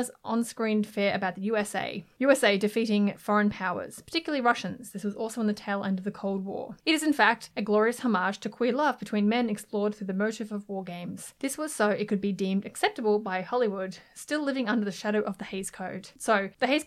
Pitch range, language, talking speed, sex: 200-245 Hz, English, 230 wpm, female